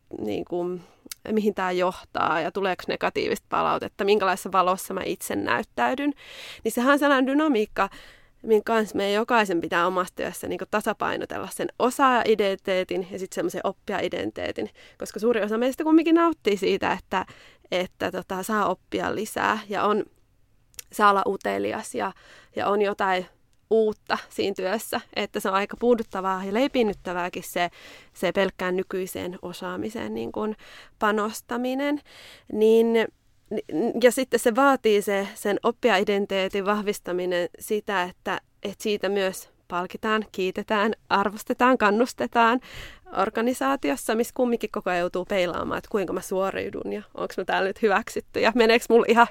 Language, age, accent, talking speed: Finnish, 20-39, native, 130 wpm